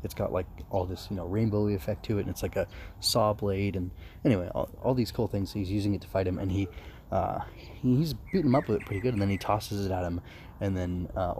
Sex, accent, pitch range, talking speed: male, American, 95-115 Hz, 270 wpm